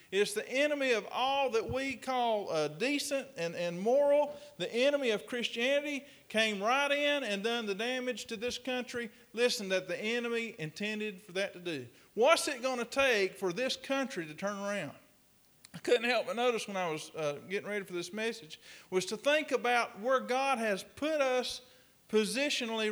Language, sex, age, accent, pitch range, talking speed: English, male, 40-59, American, 195-265 Hz, 185 wpm